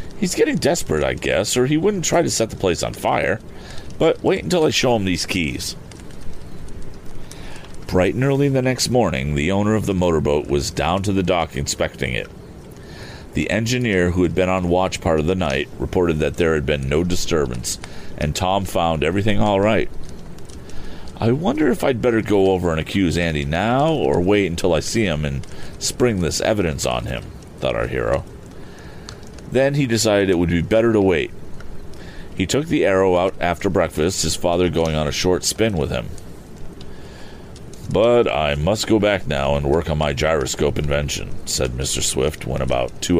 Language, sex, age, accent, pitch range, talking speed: English, male, 40-59, American, 75-110 Hz, 185 wpm